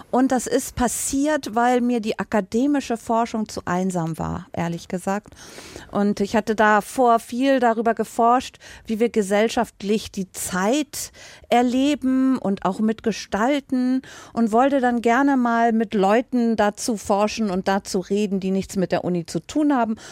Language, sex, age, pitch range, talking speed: German, female, 50-69, 200-255 Hz, 150 wpm